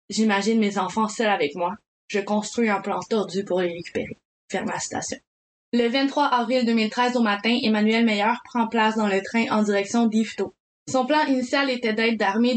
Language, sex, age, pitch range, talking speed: French, female, 20-39, 200-240 Hz, 190 wpm